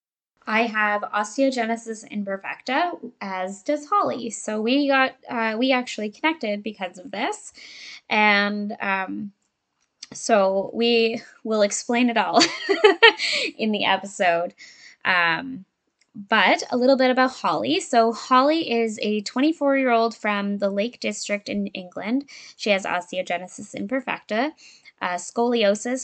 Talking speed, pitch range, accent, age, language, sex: 120 wpm, 200-255 Hz, American, 10-29, English, female